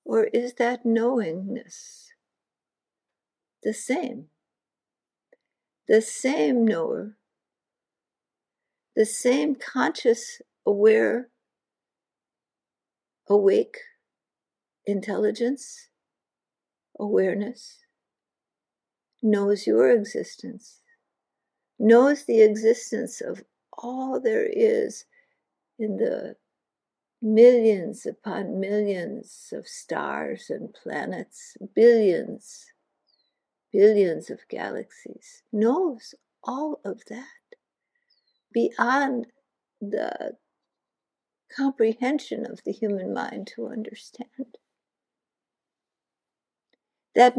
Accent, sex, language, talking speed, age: American, female, English, 65 wpm, 60-79